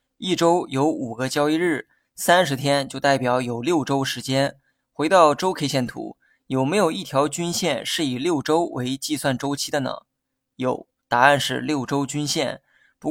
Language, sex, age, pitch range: Chinese, male, 20-39, 135-155 Hz